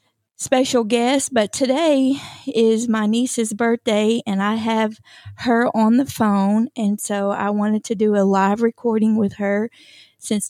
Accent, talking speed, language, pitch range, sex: American, 155 wpm, English, 215-245 Hz, female